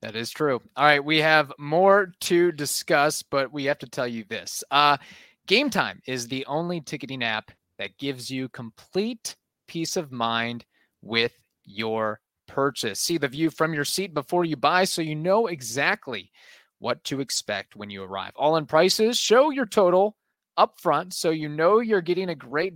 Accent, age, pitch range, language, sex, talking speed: American, 20-39, 115-165 Hz, English, male, 180 wpm